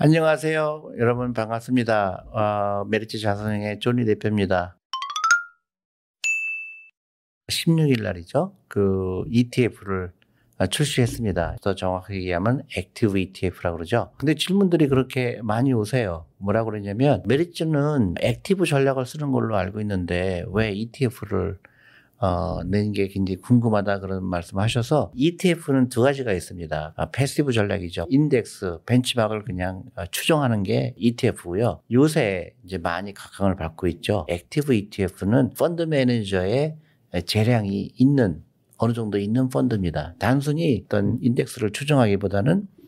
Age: 50-69